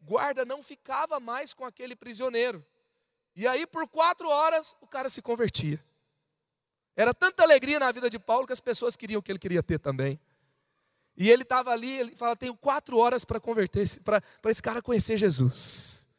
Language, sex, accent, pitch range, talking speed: Portuguese, male, Brazilian, 165-230 Hz, 180 wpm